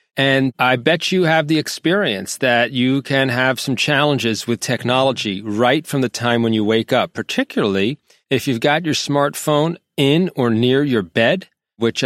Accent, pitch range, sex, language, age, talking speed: American, 110-140 Hz, male, English, 40-59, 175 wpm